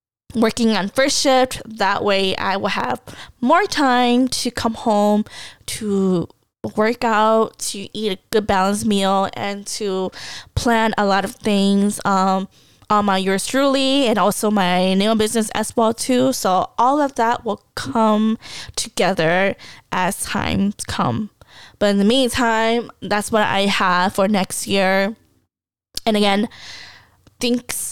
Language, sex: English, female